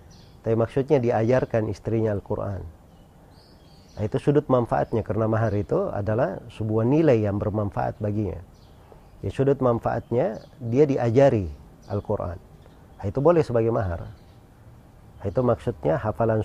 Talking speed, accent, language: 120 wpm, native, Indonesian